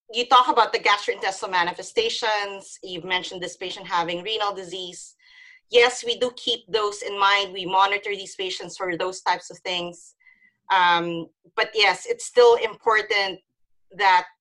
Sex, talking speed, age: female, 150 wpm, 30-49